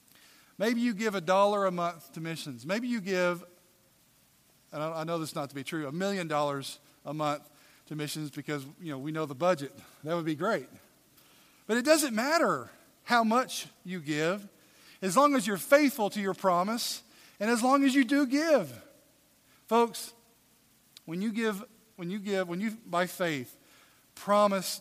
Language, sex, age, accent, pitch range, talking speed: English, male, 40-59, American, 155-220 Hz, 175 wpm